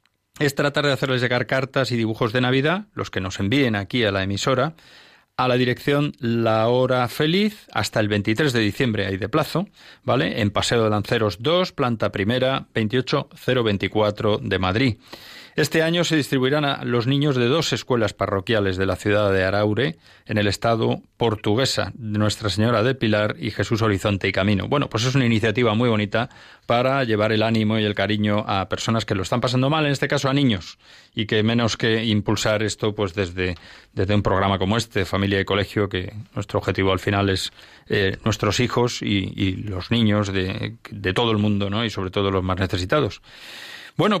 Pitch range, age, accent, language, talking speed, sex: 100-135 Hz, 30-49, Spanish, Spanish, 190 wpm, male